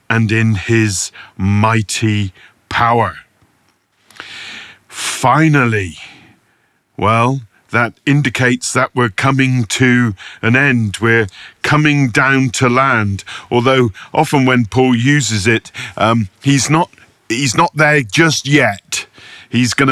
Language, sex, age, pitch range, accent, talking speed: English, male, 40-59, 110-135 Hz, British, 110 wpm